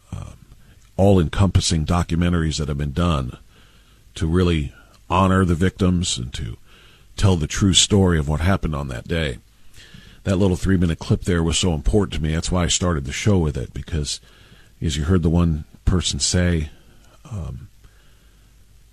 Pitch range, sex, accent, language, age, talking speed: 80-105 Hz, male, American, English, 50-69, 160 wpm